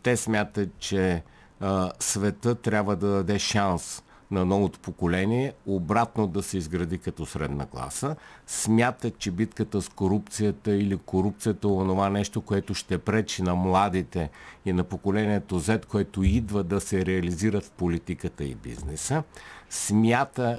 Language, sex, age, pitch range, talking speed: Bulgarian, male, 50-69, 90-105 Hz, 135 wpm